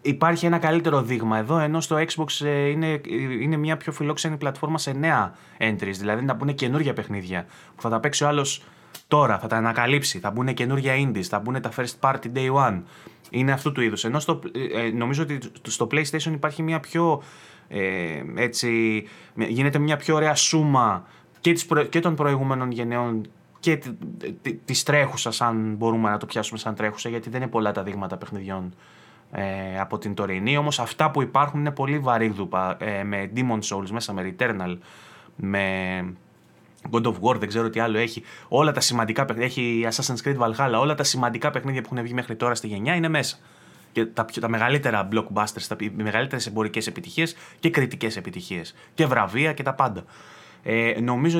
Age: 20-39